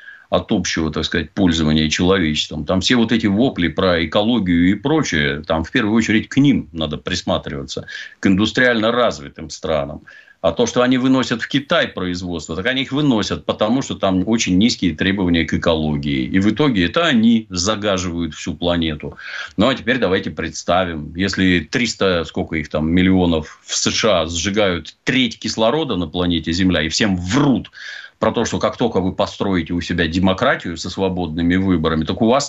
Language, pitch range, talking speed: Russian, 80-100 Hz, 165 wpm